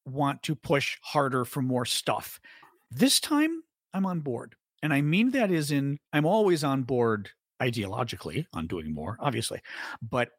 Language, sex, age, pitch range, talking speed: English, male, 40-59, 130-185 Hz, 160 wpm